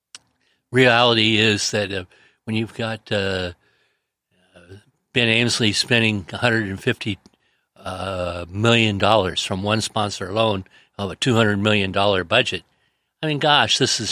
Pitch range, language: 95-115 Hz, English